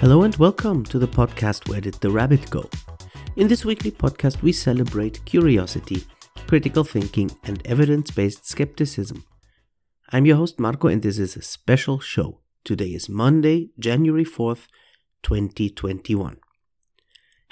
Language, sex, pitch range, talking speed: English, male, 105-160 Hz, 135 wpm